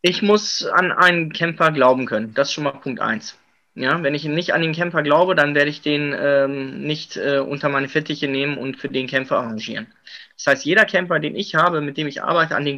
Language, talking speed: German, 235 wpm